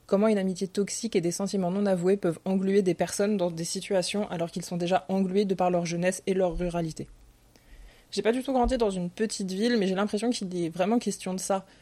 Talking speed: 235 wpm